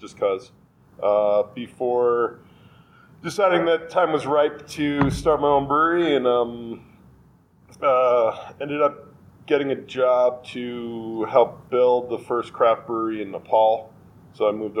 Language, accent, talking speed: English, American, 135 wpm